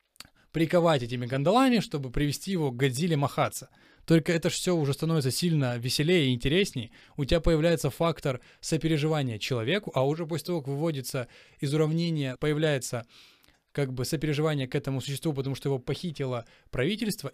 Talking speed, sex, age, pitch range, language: 155 wpm, male, 20-39, 130-160 Hz, Ukrainian